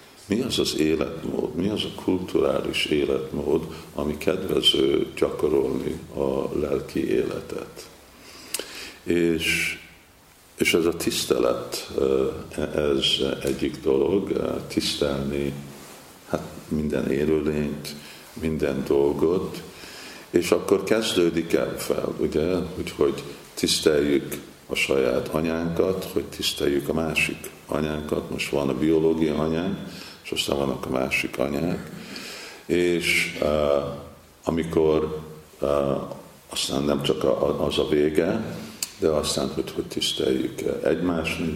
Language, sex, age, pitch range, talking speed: Hungarian, male, 50-69, 70-85 Hz, 100 wpm